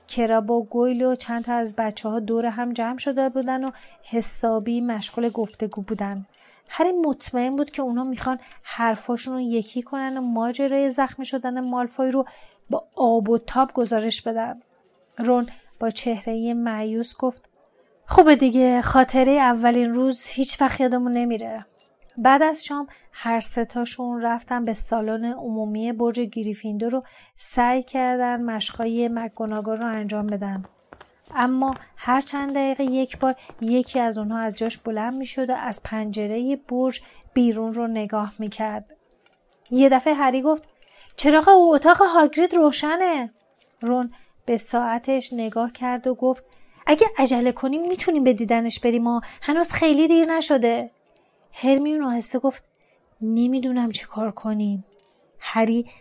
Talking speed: 140 wpm